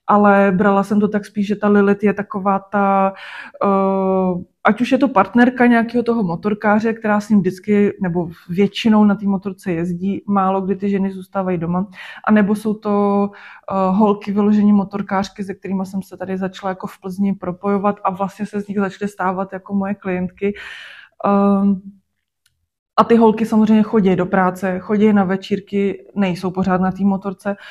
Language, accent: Czech, native